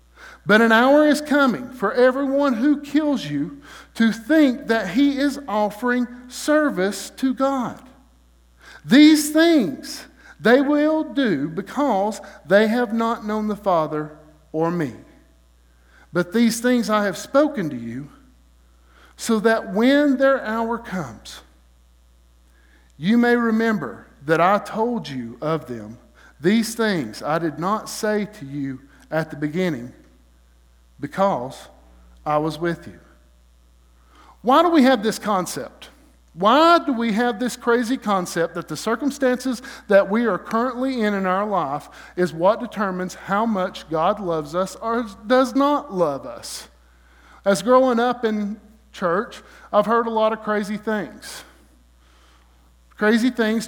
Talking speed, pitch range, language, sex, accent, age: 135 wpm, 145-240 Hz, English, male, American, 50-69